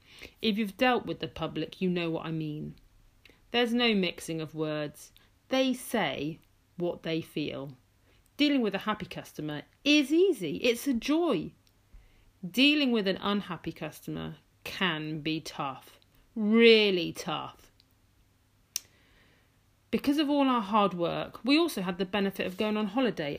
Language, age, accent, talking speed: English, 40-59, British, 145 wpm